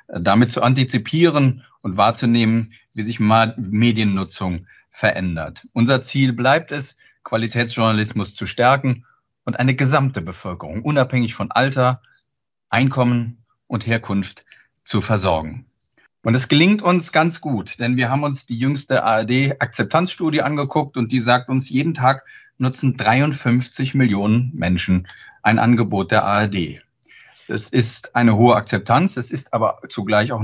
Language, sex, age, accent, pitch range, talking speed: German, male, 40-59, German, 110-135 Hz, 130 wpm